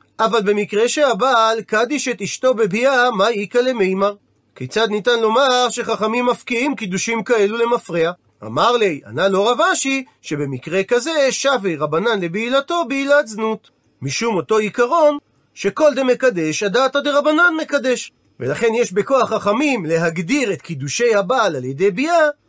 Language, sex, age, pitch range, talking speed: Hebrew, male, 40-59, 205-280 Hz, 135 wpm